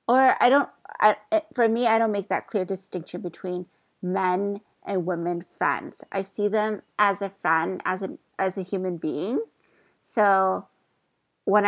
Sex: female